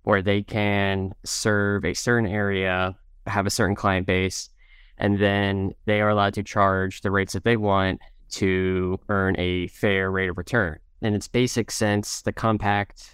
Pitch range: 95-110 Hz